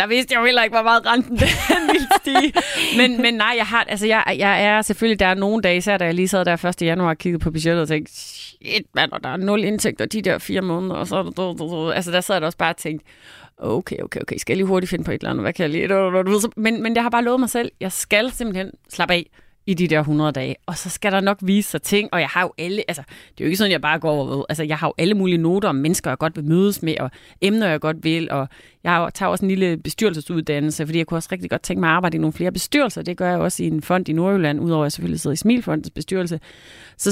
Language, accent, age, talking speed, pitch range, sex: Danish, native, 30-49, 290 wpm, 160-210 Hz, female